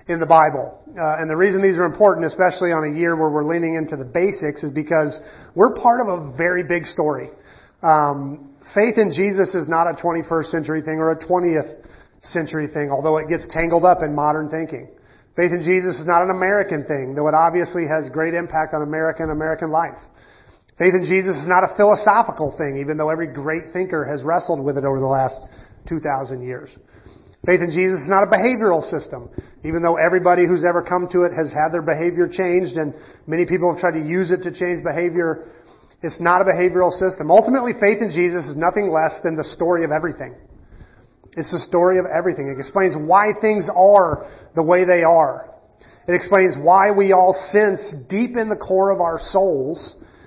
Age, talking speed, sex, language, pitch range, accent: 40-59, 200 wpm, male, English, 155-185 Hz, American